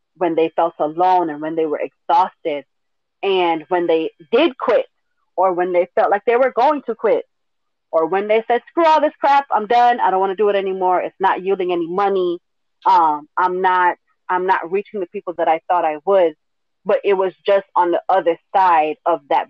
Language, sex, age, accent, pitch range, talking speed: English, female, 30-49, American, 165-220 Hz, 210 wpm